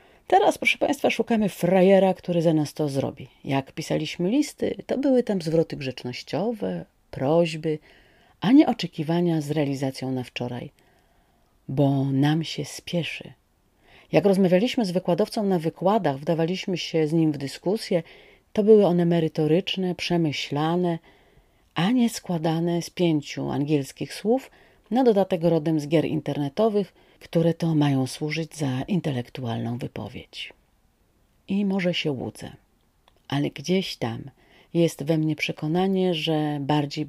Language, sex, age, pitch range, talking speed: Polish, female, 40-59, 145-185 Hz, 130 wpm